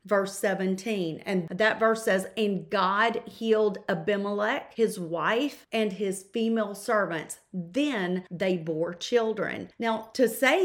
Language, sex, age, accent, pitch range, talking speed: English, female, 40-59, American, 185-220 Hz, 130 wpm